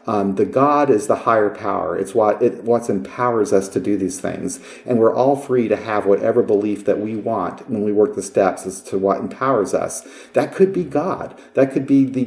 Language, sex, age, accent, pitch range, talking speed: English, male, 40-59, American, 100-130 Hz, 225 wpm